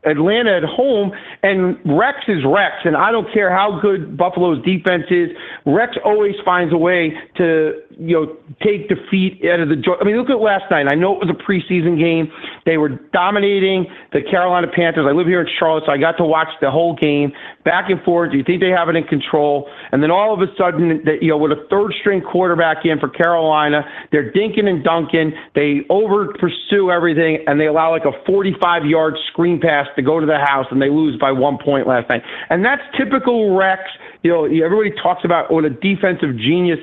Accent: American